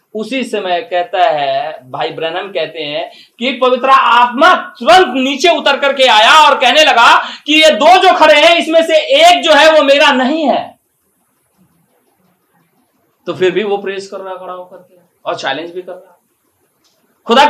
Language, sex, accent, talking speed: Hindi, male, native, 170 wpm